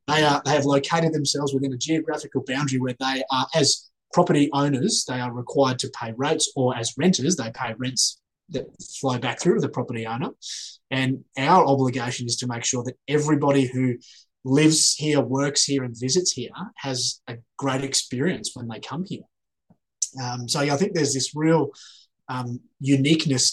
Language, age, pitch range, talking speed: English, 20-39, 125-150 Hz, 175 wpm